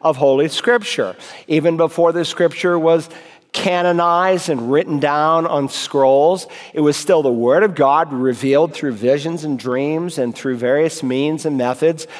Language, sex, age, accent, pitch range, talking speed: English, male, 50-69, American, 145-180 Hz, 155 wpm